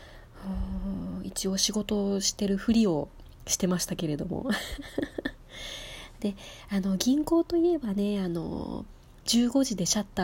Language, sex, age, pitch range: Japanese, female, 20-39, 180-225 Hz